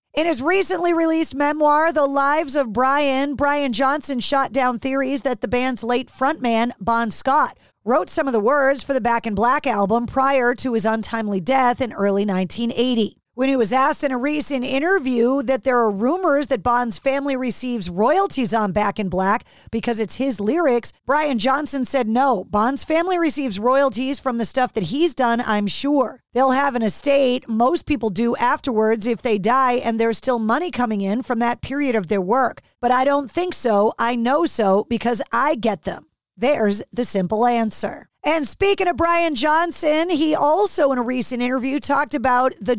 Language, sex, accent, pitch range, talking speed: English, female, American, 235-280 Hz, 190 wpm